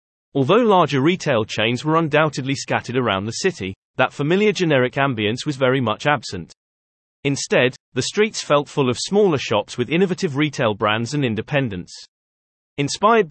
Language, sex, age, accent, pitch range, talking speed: English, male, 30-49, British, 115-155 Hz, 150 wpm